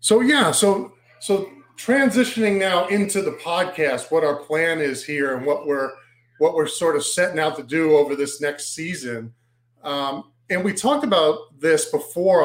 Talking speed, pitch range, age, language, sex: 175 wpm, 135-175 Hz, 40-59, English, male